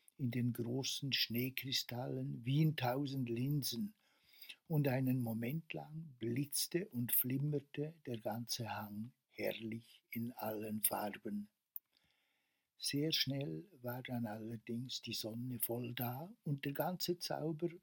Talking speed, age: 120 wpm, 60-79